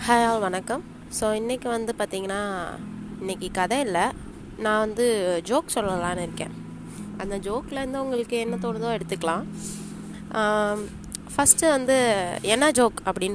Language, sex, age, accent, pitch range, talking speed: Tamil, female, 20-39, native, 185-230 Hz, 115 wpm